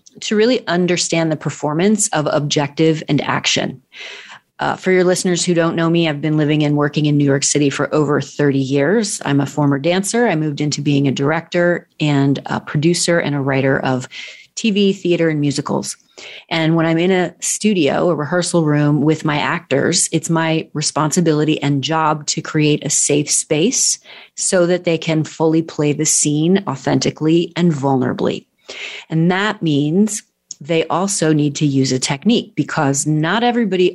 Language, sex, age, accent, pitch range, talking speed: English, female, 30-49, American, 150-180 Hz, 170 wpm